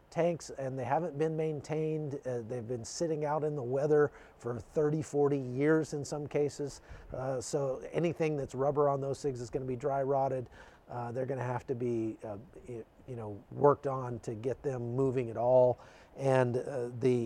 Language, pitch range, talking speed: English, 125-150 Hz, 195 wpm